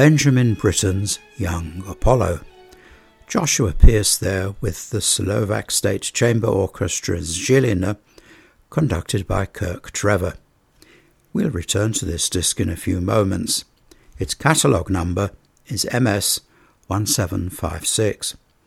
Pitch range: 95-110 Hz